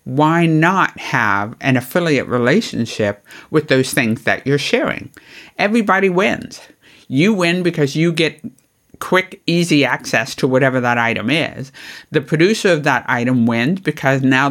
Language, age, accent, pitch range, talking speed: English, 60-79, American, 130-160 Hz, 145 wpm